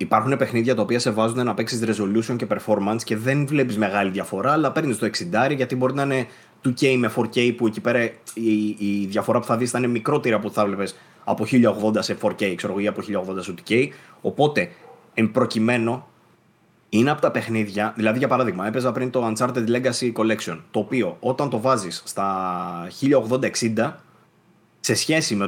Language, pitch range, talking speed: Greek, 110-140 Hz, 180 wpm